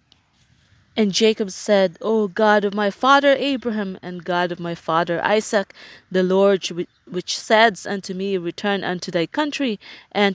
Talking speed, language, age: 150 wpm, English, 20-39